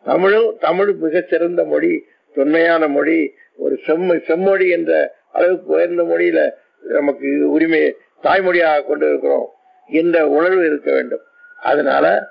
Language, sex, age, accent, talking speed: Tamil, male, 50-69, native, 110 wpm